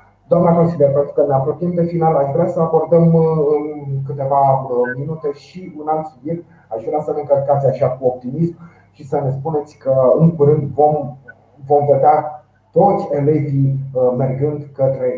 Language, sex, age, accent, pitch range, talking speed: Romanian, male, 30-49, native, 135-165 Hz, 155 wpm